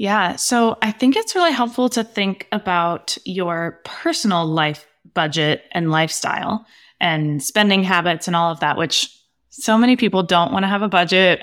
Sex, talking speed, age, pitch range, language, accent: female, 175 wpm, 20-39, 170-220 Hz, English, American